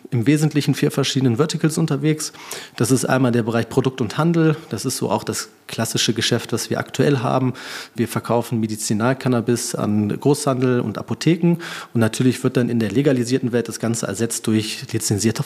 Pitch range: 115-140 Hz